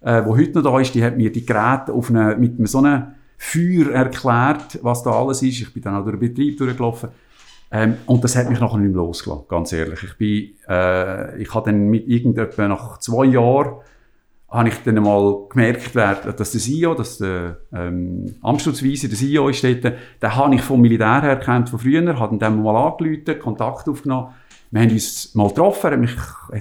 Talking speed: 200 wpm